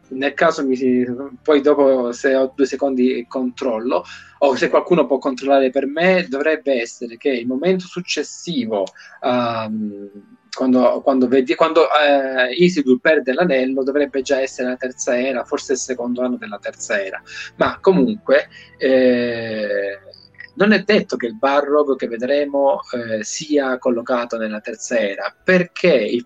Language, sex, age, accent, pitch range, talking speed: Italian, male, 20-39, native, 125-170 Hz, 140 wpm